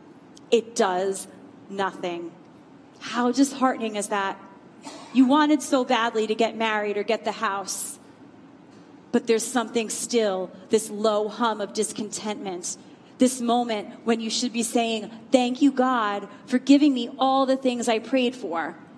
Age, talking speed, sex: 30-49, 145 wpm, female